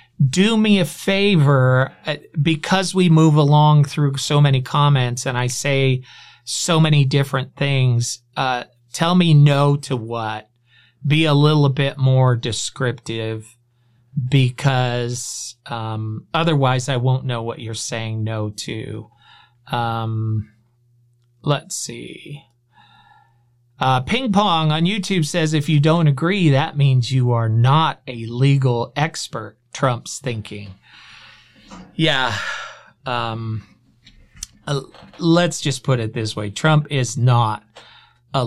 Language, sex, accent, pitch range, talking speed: English, male, American, 115-145 Hz, 120 wpm